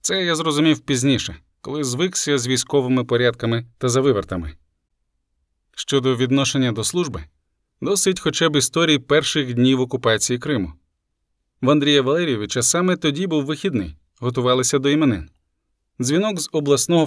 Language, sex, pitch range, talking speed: Ukrainian, male, 115-150 Hz, 125 wpm